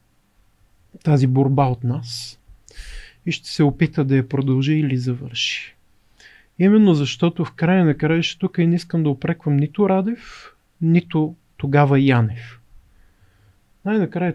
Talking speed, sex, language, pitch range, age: 135 wpm, male, Bulgarian, 125-160 Hz, 40-59